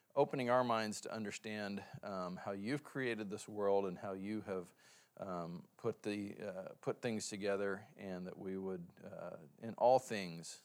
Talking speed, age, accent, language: 170 wpm, 40-59, American, English